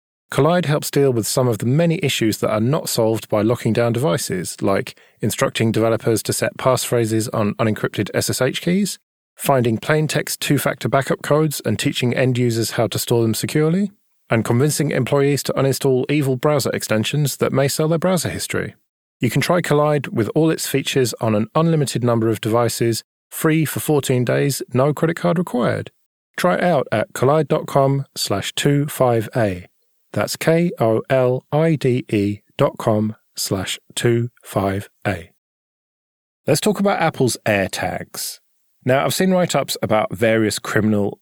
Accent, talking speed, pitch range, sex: British, 150 wpm, 110-150 Hz, male